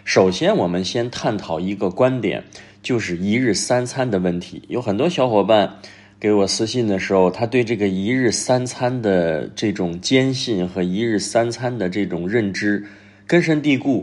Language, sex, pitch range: Chinese, male, 100-120 Hz